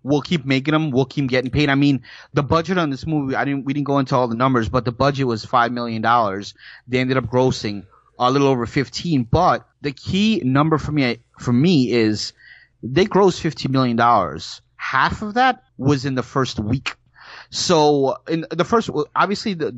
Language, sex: English, male